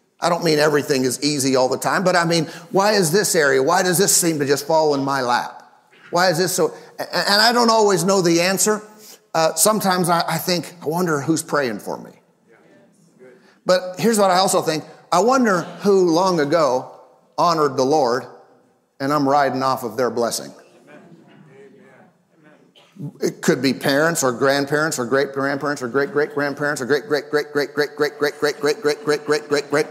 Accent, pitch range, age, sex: American, 145-200 Hz, 50-69, male